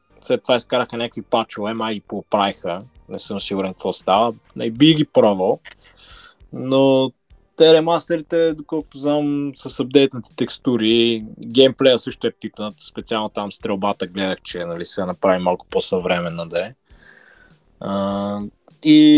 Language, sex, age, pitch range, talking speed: Bulgarian, male, 20-39, 100-130 Hz, 125 wpm